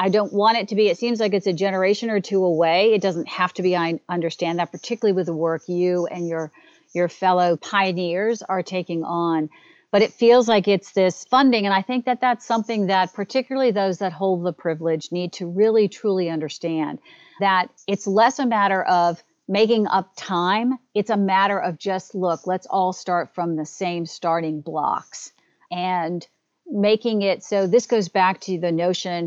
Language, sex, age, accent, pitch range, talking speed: English, female, 50-69, American, 175-215 Hz, 195 wpm